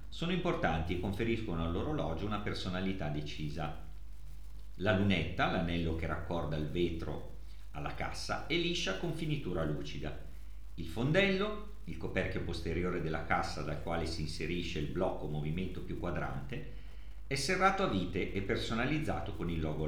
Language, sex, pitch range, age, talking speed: Italian, male, 75-105 Hz, 50-69, 140 wpm